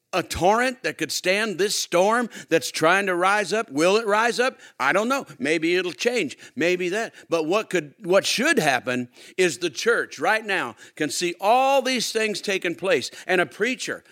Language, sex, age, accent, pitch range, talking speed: English, male, 50-69, American, 175-215 Hz, 190 wpm